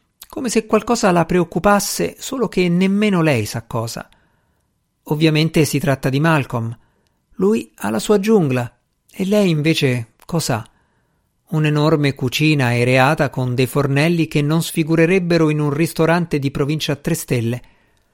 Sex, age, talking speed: male, 50-69, 140 wpm